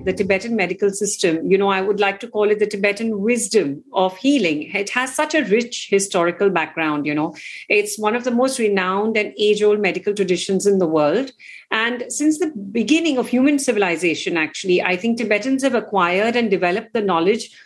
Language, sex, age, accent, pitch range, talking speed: English, female, 50-69, Indian, 195-250 Hz, 190 wpm